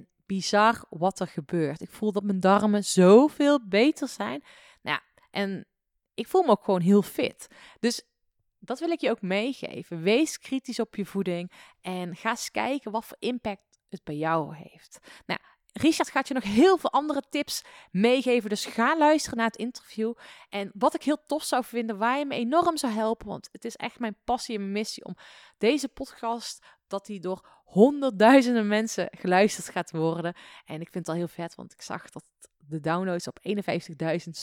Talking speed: 185 wpm